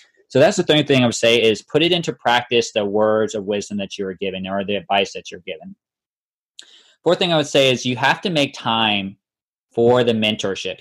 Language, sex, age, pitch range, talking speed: English, male, 20-39, 105-140 Hz, 230 wpm